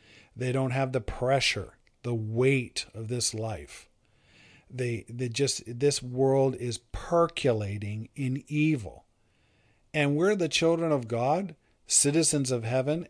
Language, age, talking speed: English, 50-69, 130 wpm